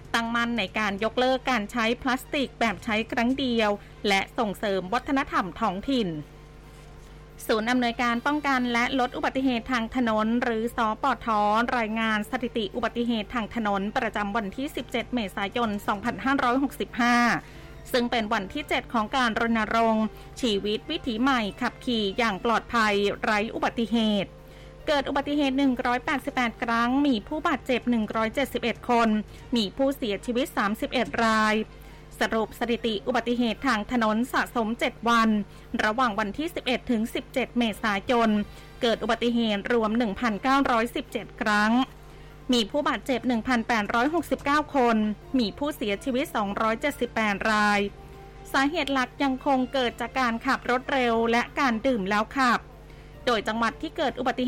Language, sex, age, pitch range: Thai, female, 20-39, 220-265 Hz